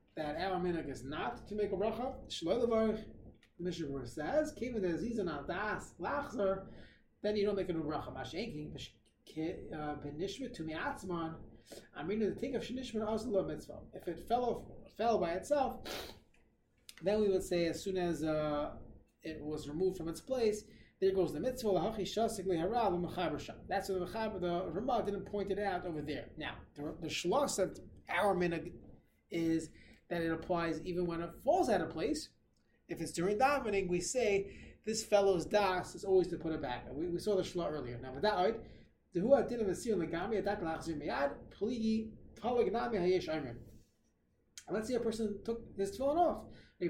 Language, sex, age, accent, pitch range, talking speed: English, male, 30-49, American, 165-215 Hz, 150 wpm